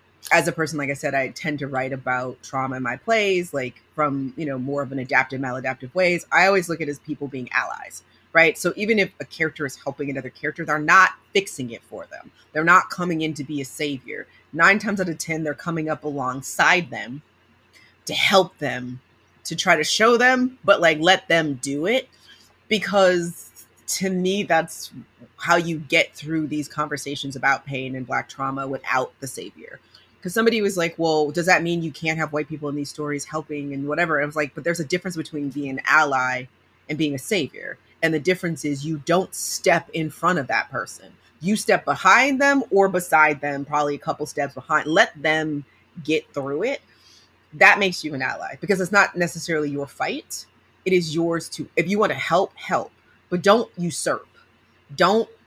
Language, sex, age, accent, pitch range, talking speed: English, female, 30-49, American, 135-175 Hz, 205 wpm